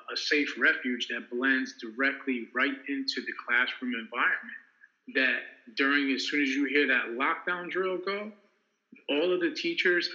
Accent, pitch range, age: American, 125-140 Hz, 30-49